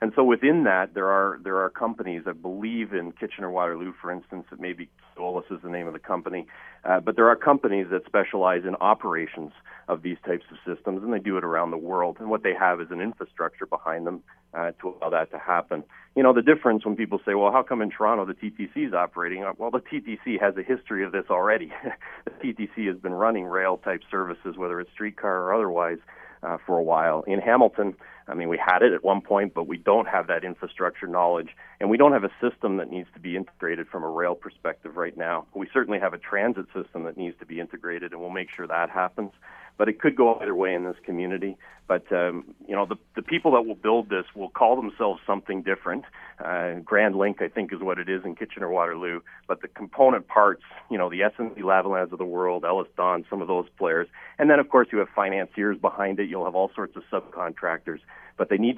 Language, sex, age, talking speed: English, male, 40-59, 230 wpm